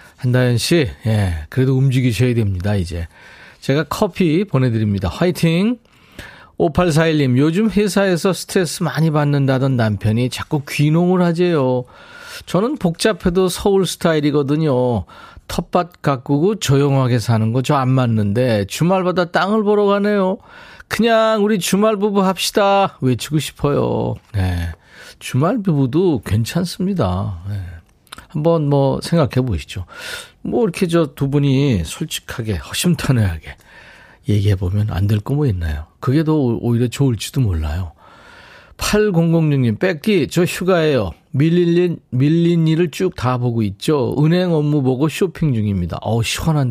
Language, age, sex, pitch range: Korean, 40-59, male, 110-175 Hz